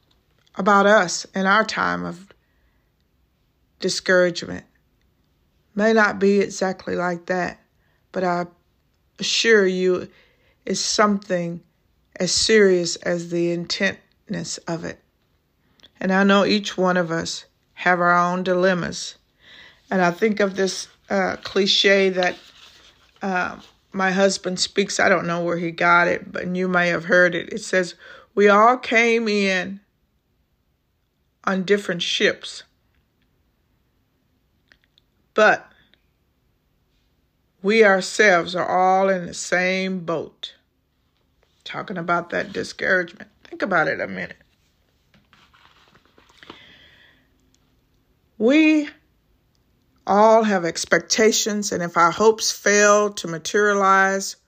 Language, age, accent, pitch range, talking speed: English, 50-69, American, 180-205 Hz, 110 wpm